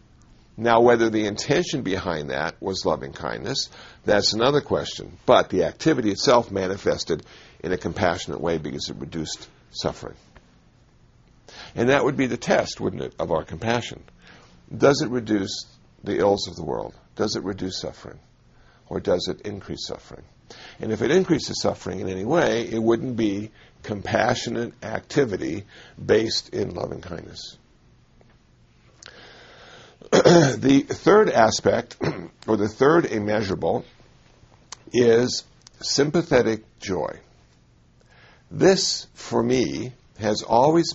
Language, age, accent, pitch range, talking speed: English, 60-79, American, 95-120 Hz, 120 wpm